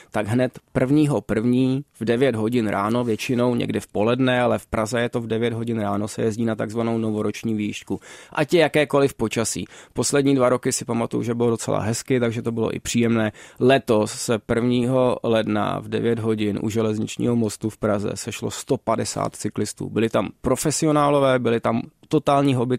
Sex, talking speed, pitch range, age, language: male, 175 wpm, 110-125 Hz, 20-39, Czech